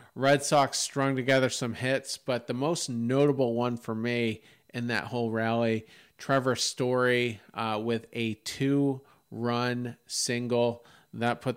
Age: 40-59